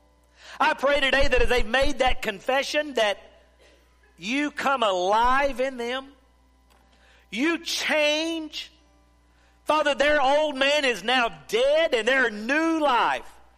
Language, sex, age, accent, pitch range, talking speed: English, male, 50-69, American, 200-305 Hz, 125 wpm